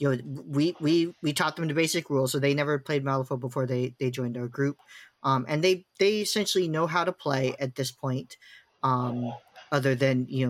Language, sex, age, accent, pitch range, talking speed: English, male, 40-59, American, 130-155 Hz, 210 wpm